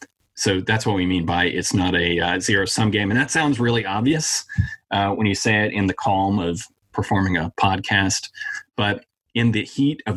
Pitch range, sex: 95-115 Hz, male